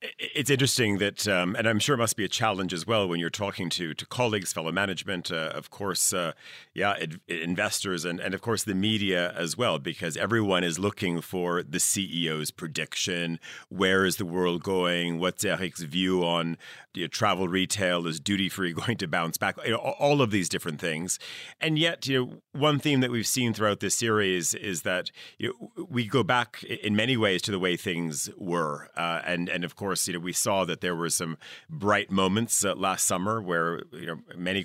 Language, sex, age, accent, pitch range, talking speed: English, male, 40-59, American, 90-110 Hz, 210 wpm